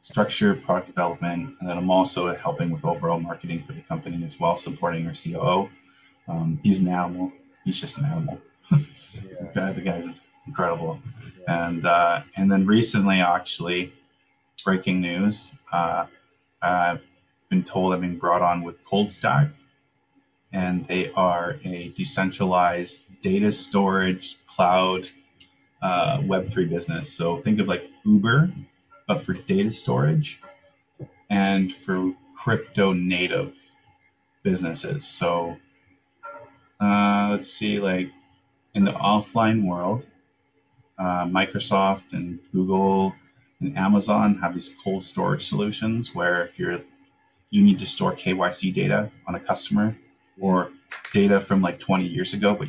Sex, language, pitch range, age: male, English, 90-110 Hz, 20-39